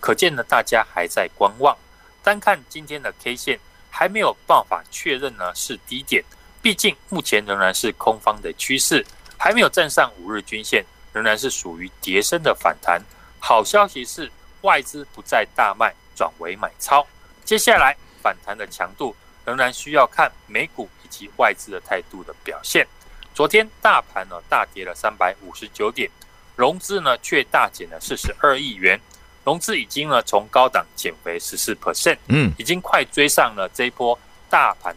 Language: Chinese